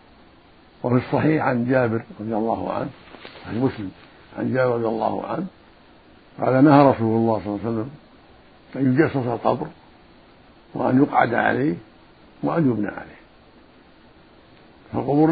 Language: Arabic